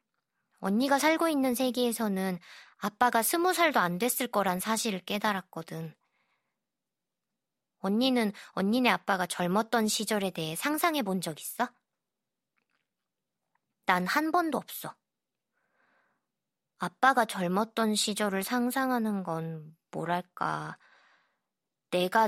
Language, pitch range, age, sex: Korean, 170-230 Hz, 20-39, male